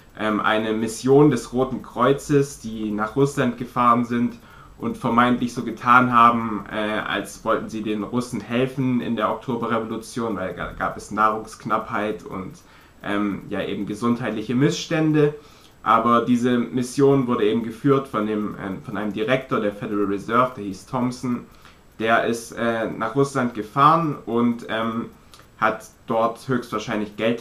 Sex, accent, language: male, German, German